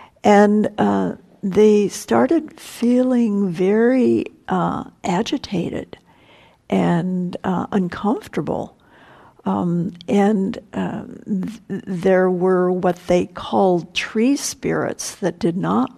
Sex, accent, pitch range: female, American, 180-230 Hz